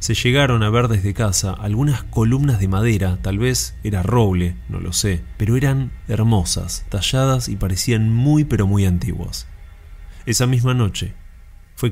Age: 20-39